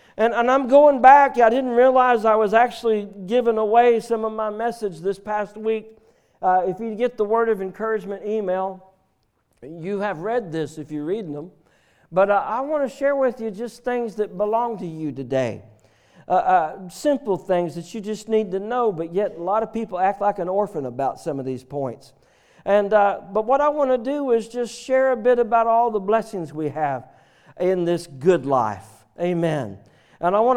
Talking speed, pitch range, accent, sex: 205 wpm, 155-225 Hz, American, male